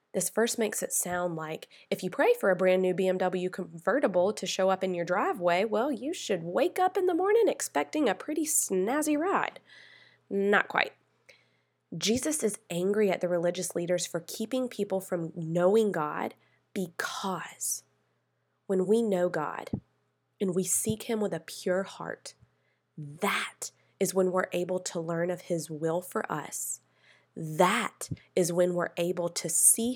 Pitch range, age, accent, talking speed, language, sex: 170-220 Hz, 20-39, American, 160 wpm, English, female